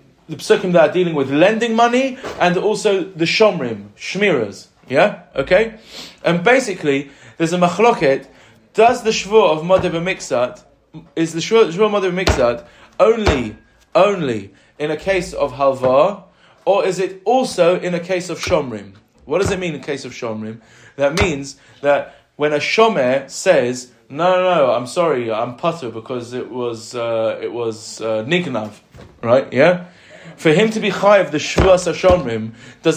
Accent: British